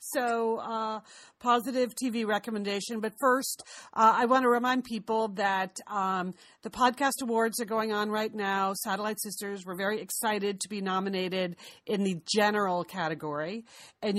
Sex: female